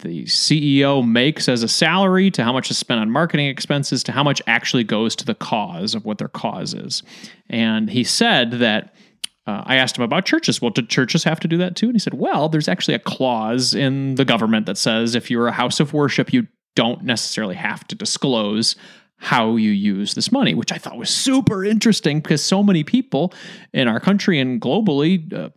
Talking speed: 215 wpm